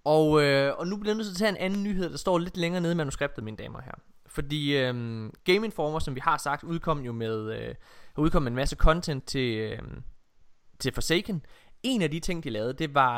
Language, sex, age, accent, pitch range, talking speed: Danish, male, 20-39, native, 130-180 Hz, 230 wpm